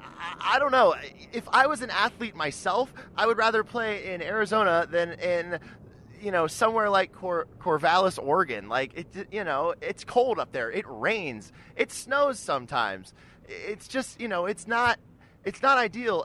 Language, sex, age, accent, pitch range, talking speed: English, male, 20-39, American, 165-220 Hz, 170 wpm